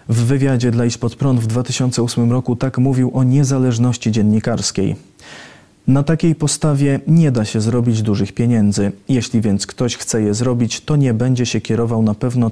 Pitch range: 110-130 Hz